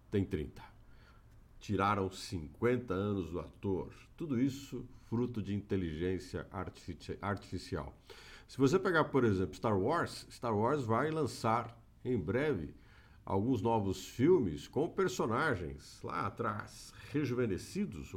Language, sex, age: Portuguese, male, 50-69